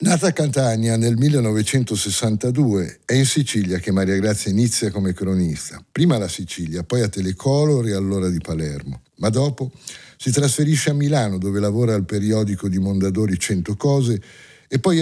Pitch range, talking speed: 95-130 Hz, 160 wpm